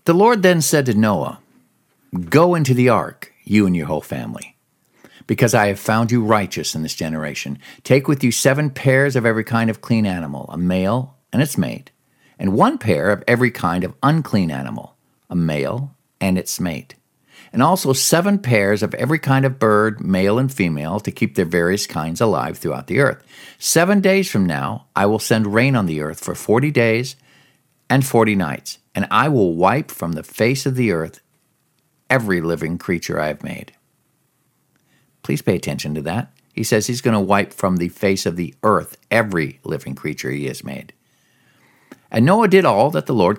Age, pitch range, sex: 50-69, 95-130 Hz, male